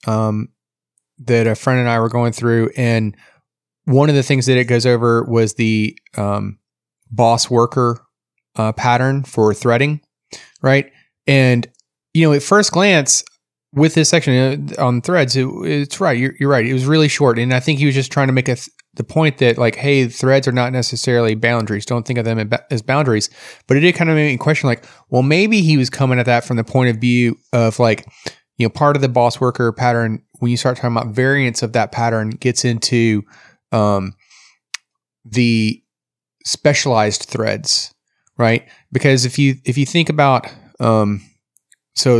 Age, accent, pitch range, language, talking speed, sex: 30-49, American, 115-135 Hz, English, 190 wpm, male